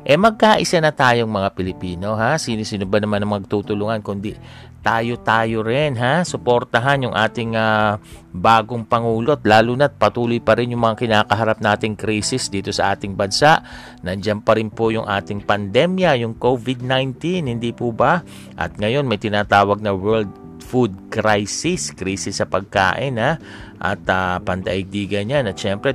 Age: 40-59